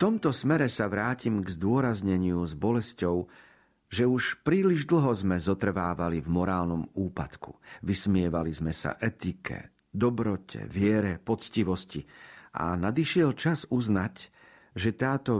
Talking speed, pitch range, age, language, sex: 120 wpm, 90-120 Hz, 50-69, Slovak, male